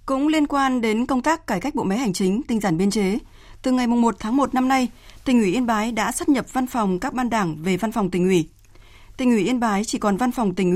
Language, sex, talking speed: Vietnamese, female, 275 wpm